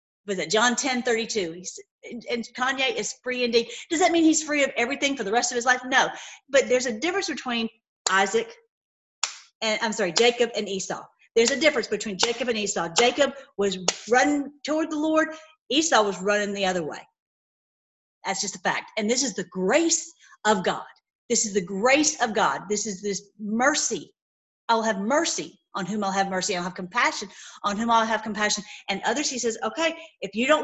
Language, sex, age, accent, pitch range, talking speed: English, female, 40-59, American, 205-305 Hz, 195 wpm